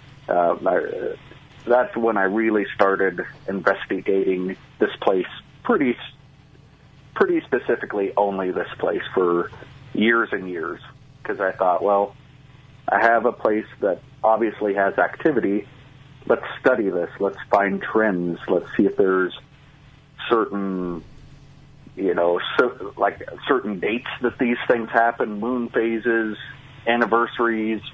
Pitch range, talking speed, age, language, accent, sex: 100-135 Hz, 120 wpm, 40-59, English, American, male